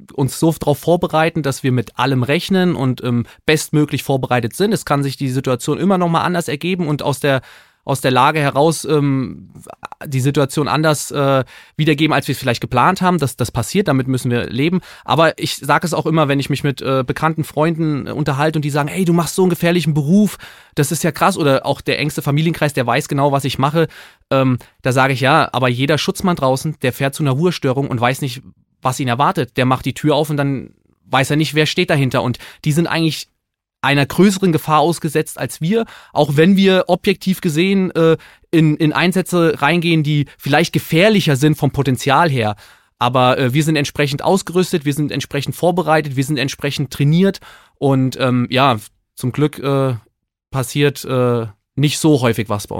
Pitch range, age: 130-160 Hz, 30-49